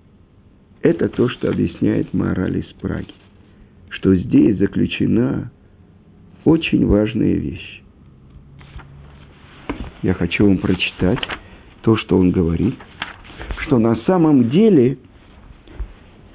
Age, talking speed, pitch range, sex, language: 50-69, 90 wpm, 95-145 Hz, male, Russian